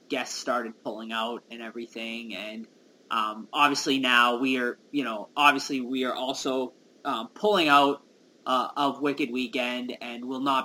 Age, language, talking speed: 20-39, English, 160 wpm